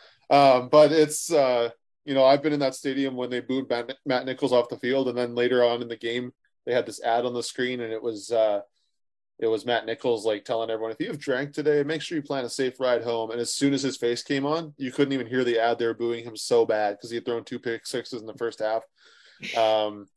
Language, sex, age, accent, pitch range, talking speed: English, male, 20-39, American, 115-135 Hz, 265 wpm